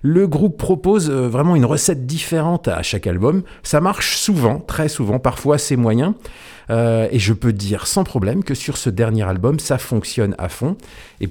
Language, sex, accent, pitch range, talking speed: French, male, French, 115-155 Hz, 185 wpm